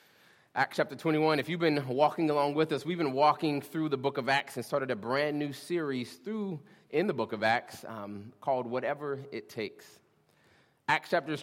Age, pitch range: 30-49, 120-155 Hz